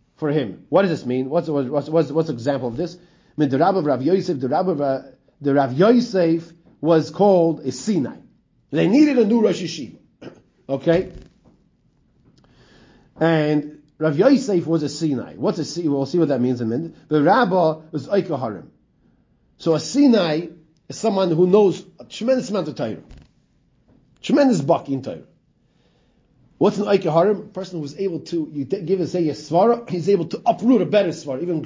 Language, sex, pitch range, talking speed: English, male, 145-195 Hz, 180 wpm